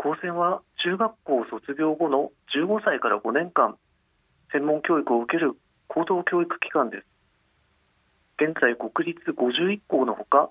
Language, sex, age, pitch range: Japanese, male, 40-59, 130-170 Hz